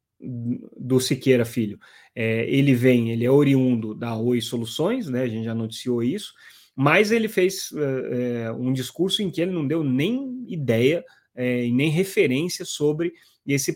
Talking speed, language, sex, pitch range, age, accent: 160 wpm, Portuguese, male, 115-135 Hz, 30-49, Brazilian